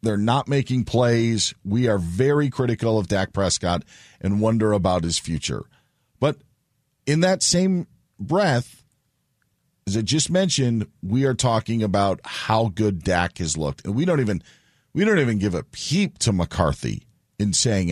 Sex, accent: male, American